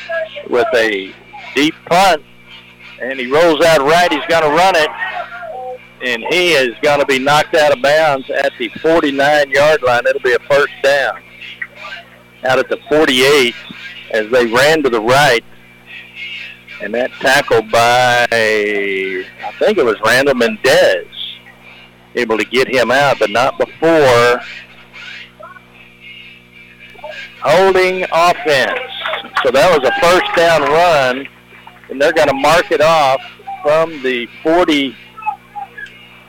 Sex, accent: male, American